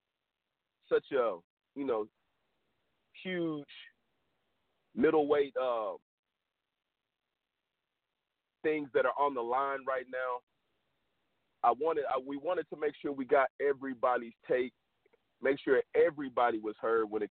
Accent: American